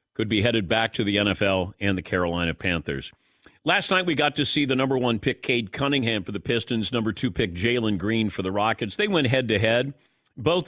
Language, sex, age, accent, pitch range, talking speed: English, male, 50-69, American, 115-150 Hz, 215 wpm